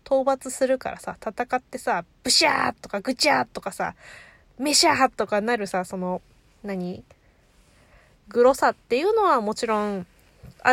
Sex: female